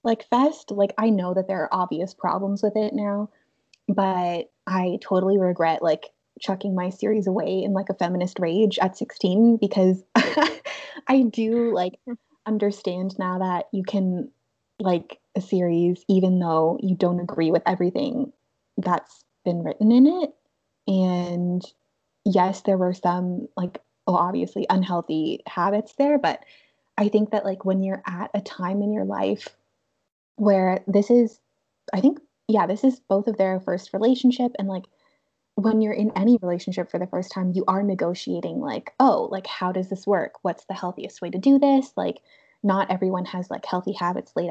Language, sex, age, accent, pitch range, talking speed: English, female, 20-39, American, 180-215 Hz, 170 wpm